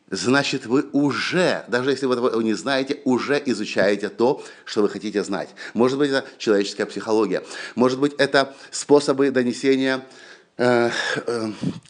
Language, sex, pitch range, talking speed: Russian, male, 125-155 Hz, 140 wpm